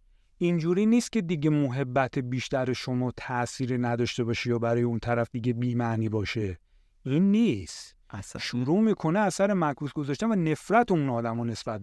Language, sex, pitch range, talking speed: Persian, male, 130-185 Hz, 145 wpm